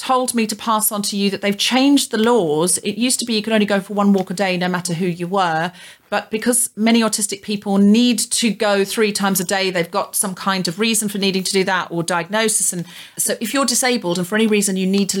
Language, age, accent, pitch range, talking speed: English, 40-59, British, 170-210 Hz, 265 wpm